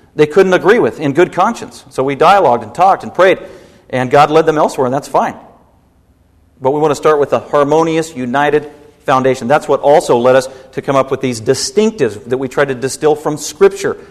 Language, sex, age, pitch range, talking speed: English, male, 40-59, 125-150 Hz, 215 wpm